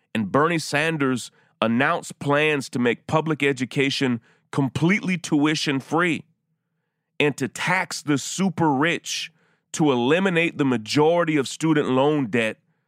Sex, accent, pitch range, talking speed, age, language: male, American, 130-165 Hz, 110 wpm, 30-49, English